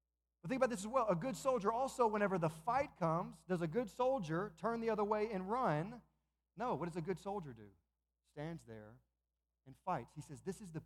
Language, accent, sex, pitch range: English, American, male, 140-220 Hz